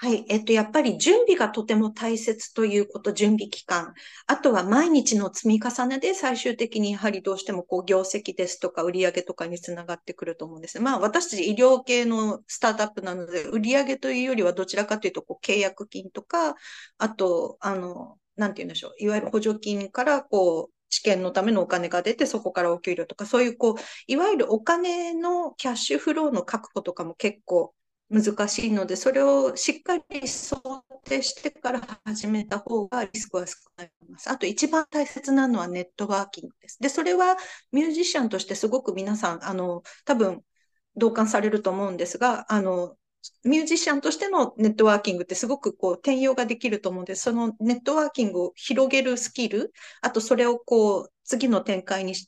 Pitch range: 190-260 Hz